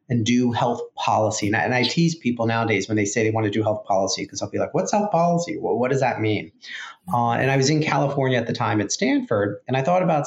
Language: English